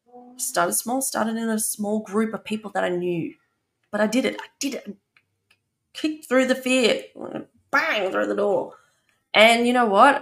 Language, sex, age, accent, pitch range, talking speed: English, female, 20-39, Australian, 215-315 Hz, 180 wpm